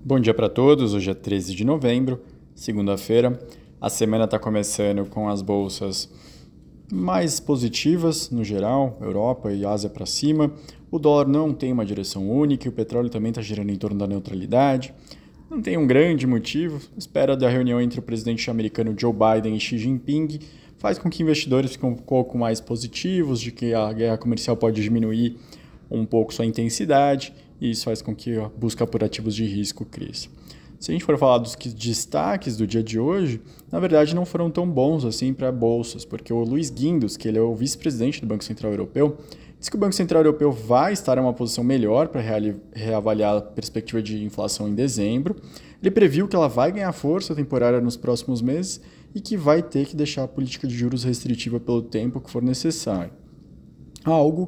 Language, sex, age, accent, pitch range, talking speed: Portuguese, male, 20-39, Brazilian, 110-145 Hz, 190 wpm